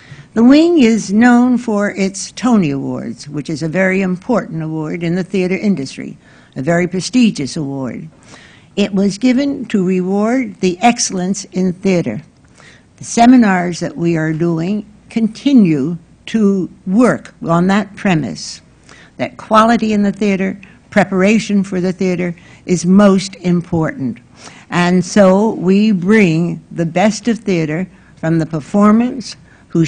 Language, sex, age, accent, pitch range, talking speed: English, female, 60-79, American, 165-210 Hz, 135 wpm